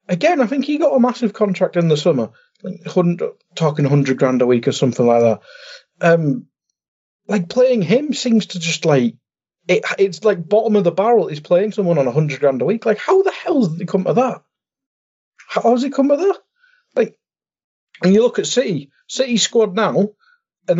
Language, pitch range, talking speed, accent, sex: English, 140-230 Hz, 205 wpm, British, male